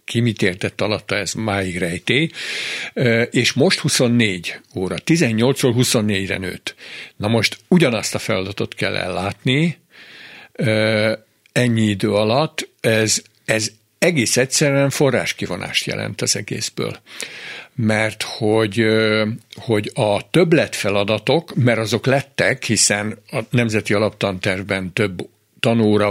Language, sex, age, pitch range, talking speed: Hungarian, male, 60-79, 100-125 Hz, 105 wpm